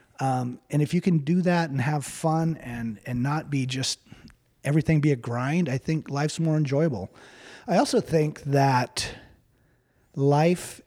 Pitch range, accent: 130-160 Hz, American